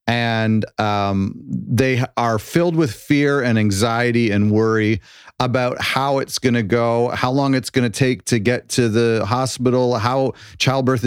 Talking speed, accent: 165 wpm, American